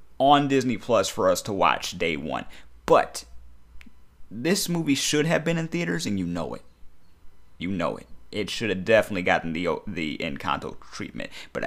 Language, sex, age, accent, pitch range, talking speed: English, male, 30-49, American, 120-165 Hz, 175 wpm